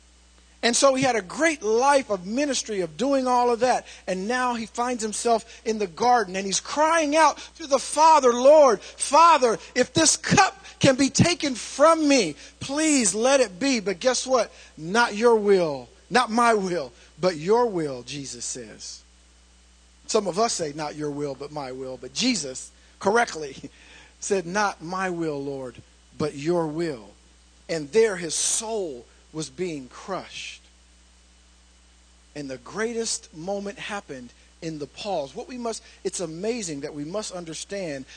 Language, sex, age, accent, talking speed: English, male, 50-69, American, 160 wpm